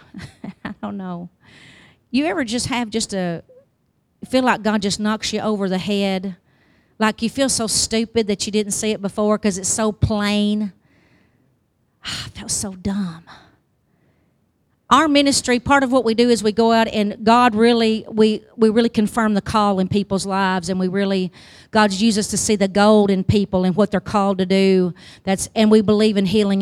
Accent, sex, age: American, female, 40-59